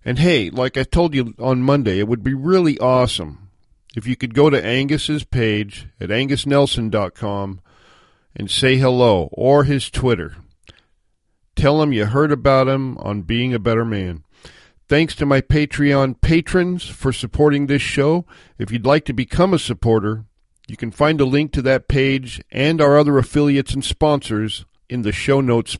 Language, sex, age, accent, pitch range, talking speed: English, male, 50-69, American, 110-140 Hz, 170 wpm